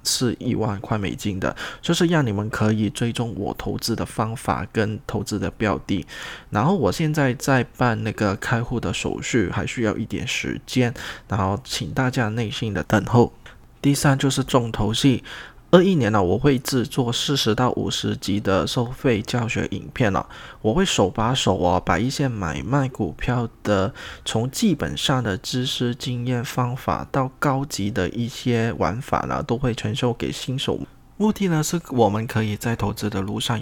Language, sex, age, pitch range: Chinese, male, 20-39, 105-130 Hz